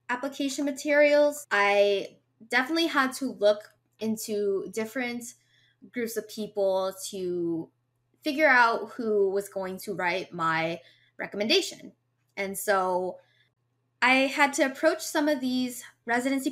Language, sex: English, female